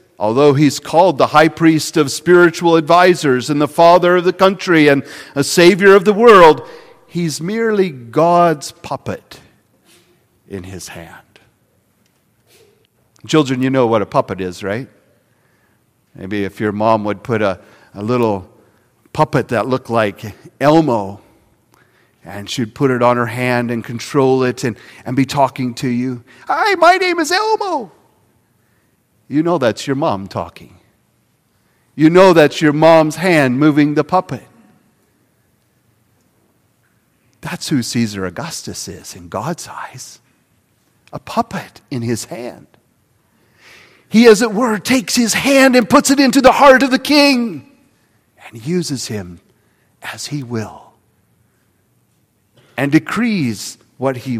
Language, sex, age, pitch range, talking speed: English, male, 50-69, 115-175 Hz, 140 wpm